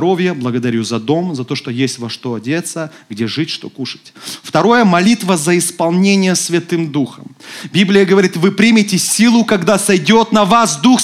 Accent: native